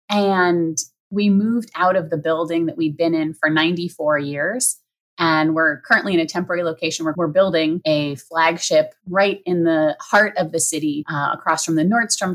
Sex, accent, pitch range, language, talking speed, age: female, American, 155-185 Hz, English, 190 wpm, 30-49